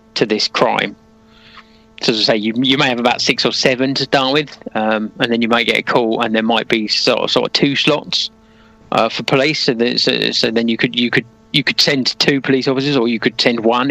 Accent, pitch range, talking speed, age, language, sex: British, 110-125 Hz, 255 wpm, 30-49, English, male